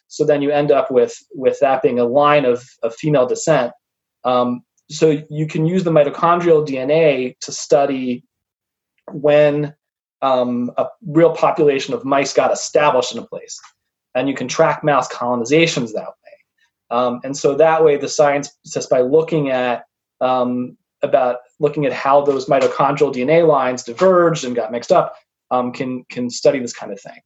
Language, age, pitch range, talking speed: English, 20-39, 125-155 Hz, 170 wpm